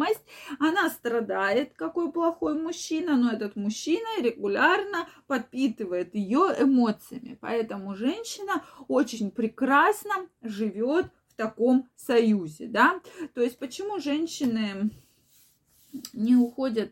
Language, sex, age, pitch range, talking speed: Russian, female, 20-39, 200-270 Hz, 95 wpm